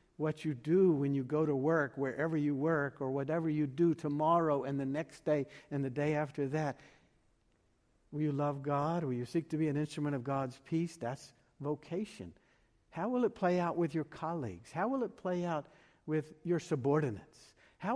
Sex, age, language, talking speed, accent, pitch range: male, 60-79, English, 195 wpm, American, 130-160 Hz